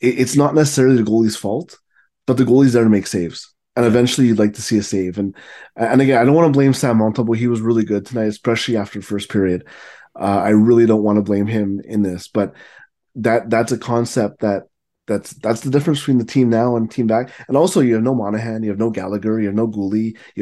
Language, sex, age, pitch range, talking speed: English, male, 20-39, 100-120 Hz, 240 wpm